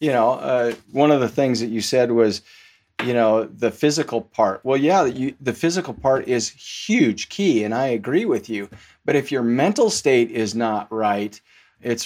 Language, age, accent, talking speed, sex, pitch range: English, 40-59, American, 190 wpm, male, 115-140 Hz